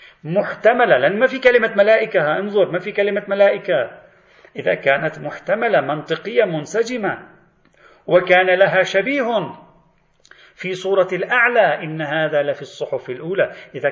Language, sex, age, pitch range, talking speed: Arabic, male, 40-59, 145-185 Hz, 125 wpm